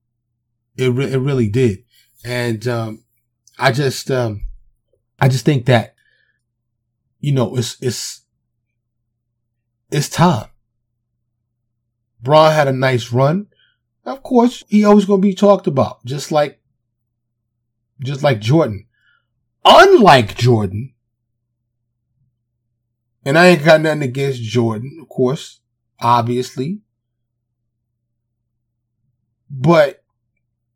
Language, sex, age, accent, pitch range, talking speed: English, male, 30-49, American, 115-135 Hz, 100 wpm